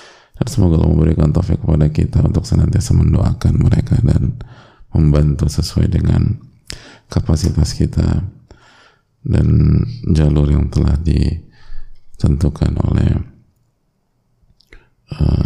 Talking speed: 90 wpm